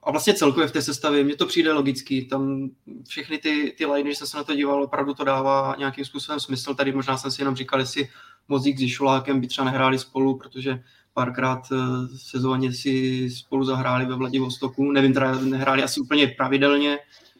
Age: 20-39